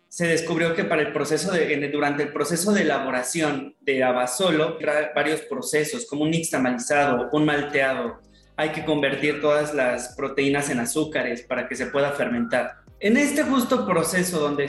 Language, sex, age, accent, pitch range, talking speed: Spanish, male, 20-39, Mexican, 145-180 Hz, 170 wpm